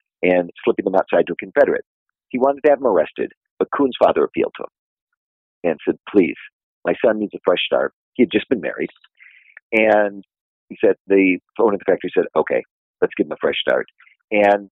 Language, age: English, 50-69